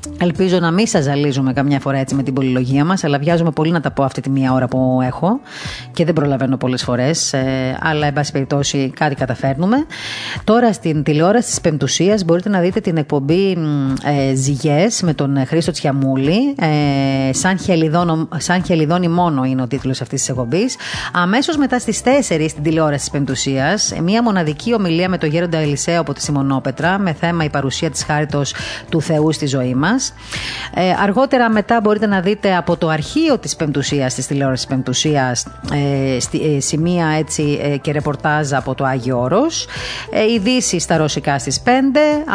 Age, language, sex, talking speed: 30-49, Greek, female, 165 wpm